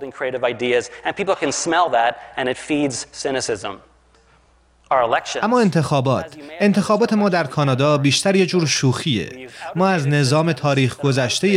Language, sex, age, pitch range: Persian, male, 30-49, 130-165 Hz